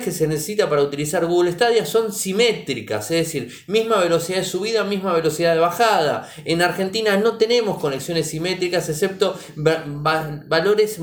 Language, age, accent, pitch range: Spanish, 20-39, Argentinian, 155-210 Hz